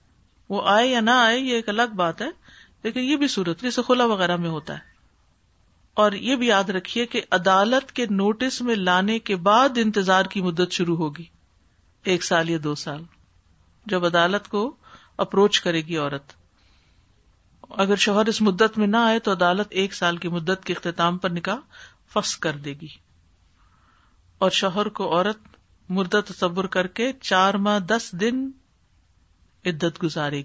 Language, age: English, 50-69